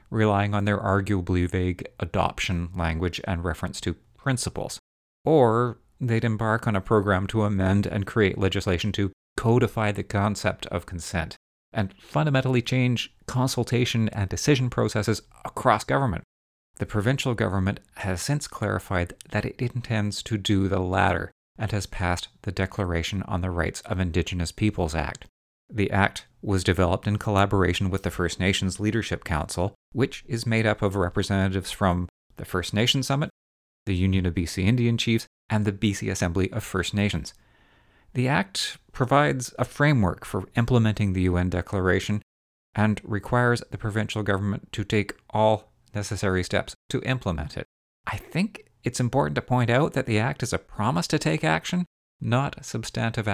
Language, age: English, 40-59